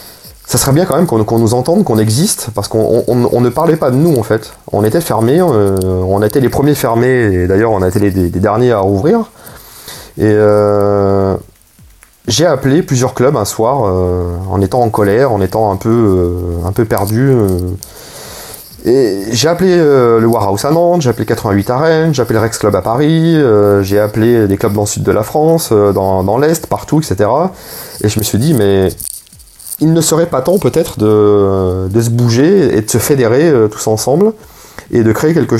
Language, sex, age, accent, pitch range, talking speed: French, male, 30-49, French, 100-135 Hz, 215 wpm